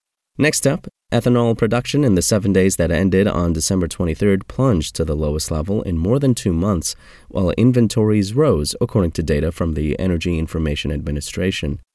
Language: English